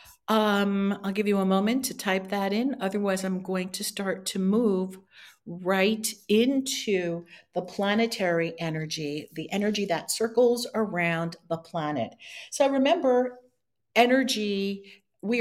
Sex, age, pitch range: female, 50-69, 165-215 Hz